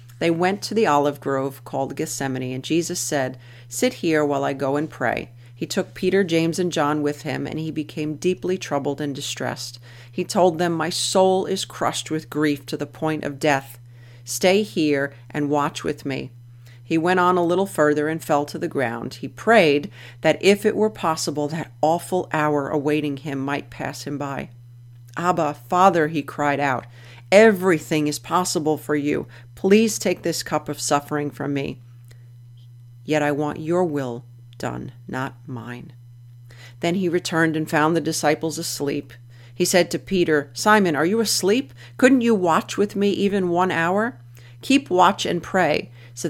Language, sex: English, female